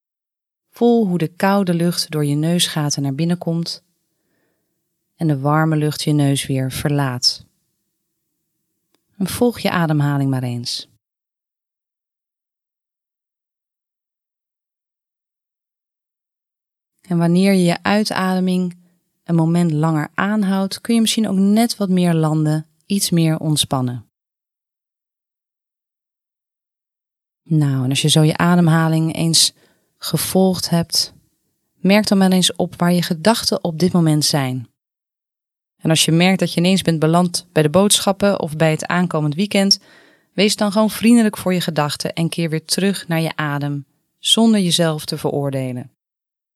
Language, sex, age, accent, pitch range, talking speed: English, female, 30-49, Dutch, 155-185 Hz, 130 wpm